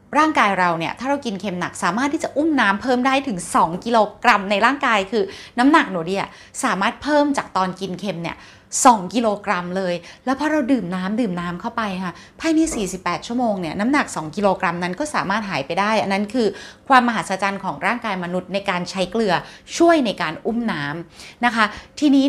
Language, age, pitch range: Thai, 20-39, 190-255 Hz